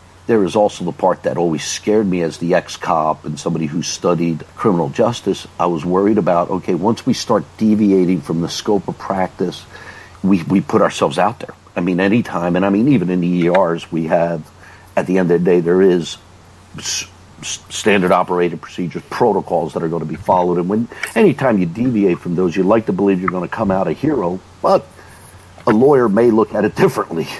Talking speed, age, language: 210 wpm, 50-69, English